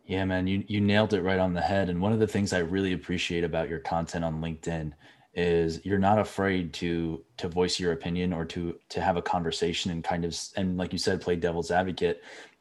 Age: 20-39